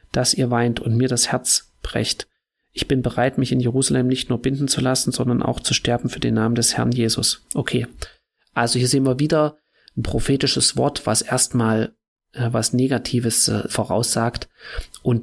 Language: German